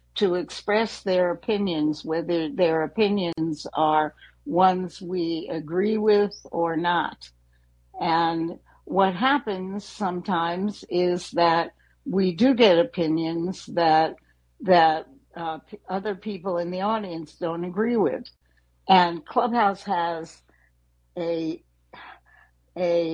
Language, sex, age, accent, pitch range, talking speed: English, female, 60-79, American, 165-205 Hz, 105 wpm